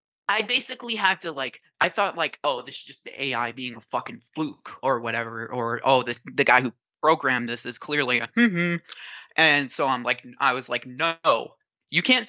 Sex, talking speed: male, 205 wpm